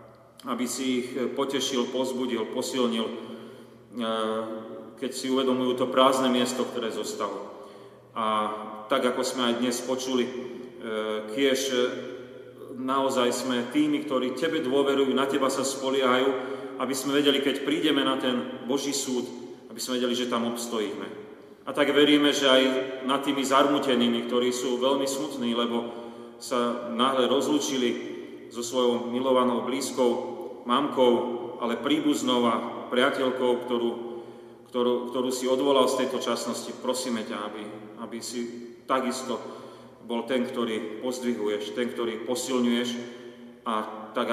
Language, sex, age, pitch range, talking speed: Slovak, male, 30-49, 120-130 Hz, 130 wpm